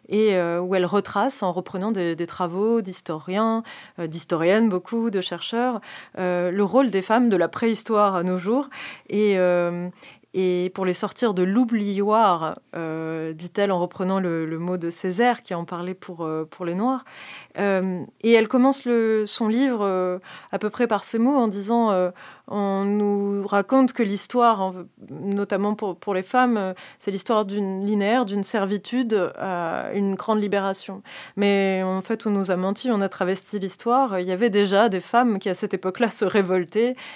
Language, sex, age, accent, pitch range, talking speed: French, female, 30-49, French, 180-220 Hz, 175 wpm